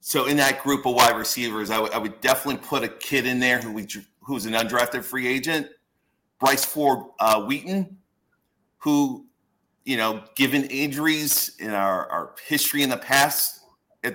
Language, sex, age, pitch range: English, male, 40-59, 105-140 Hz